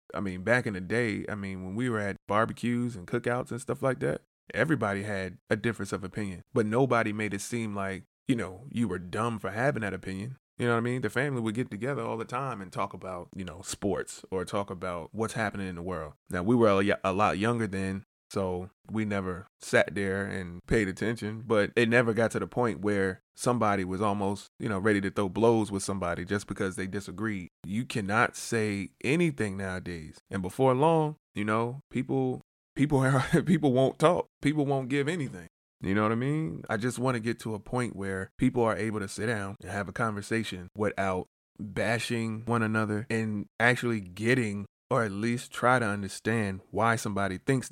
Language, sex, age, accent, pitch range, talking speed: English, male, 20-39, American, 95-120 Hz, 205 wpm